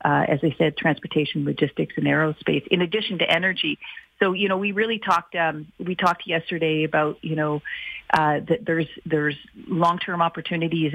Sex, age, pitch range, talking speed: female, 40-59, 155-180 Hz, 170 wpm